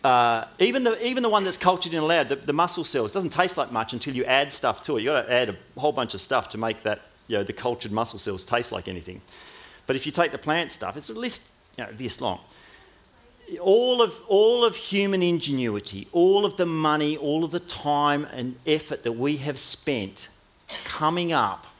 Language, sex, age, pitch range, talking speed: English, male, 40-59, 135-195 Hz, 225 wpm